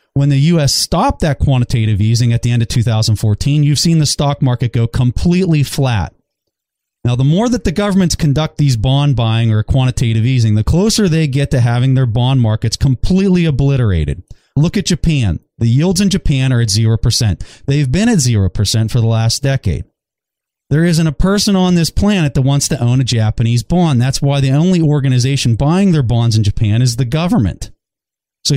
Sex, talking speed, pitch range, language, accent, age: male, 190 wpm, 115-150 Hz, English, American, 30-49